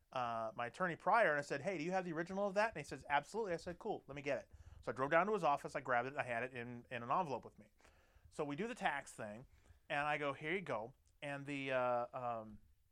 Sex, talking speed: male, 285 wpm